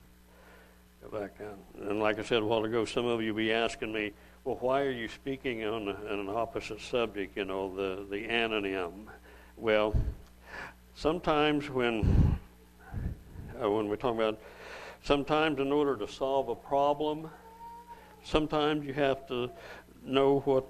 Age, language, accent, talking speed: 60-79, English, American, 150 wpm